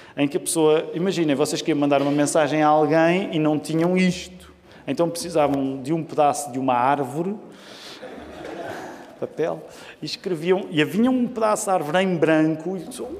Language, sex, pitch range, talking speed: Portuguese, male, 140-185 Hz, 170 wpm